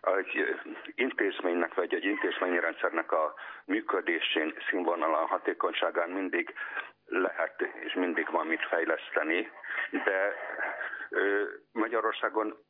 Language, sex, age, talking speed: Hungarian, male, 50-69, 90 wpm